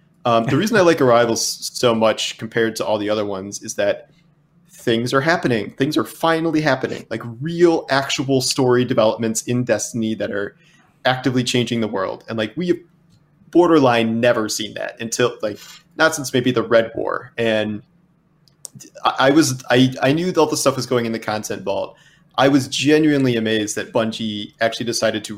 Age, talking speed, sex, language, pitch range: 30-49, 180 wpm, male, English, 110-140 Hz